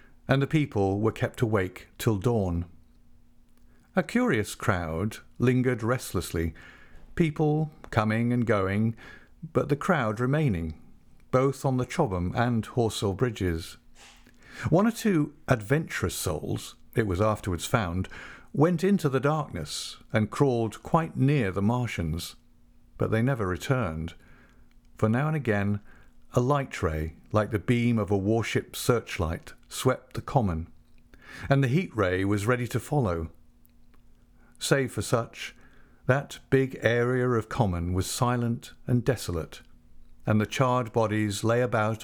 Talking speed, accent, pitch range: 130 wpm, British, 95-135 Hz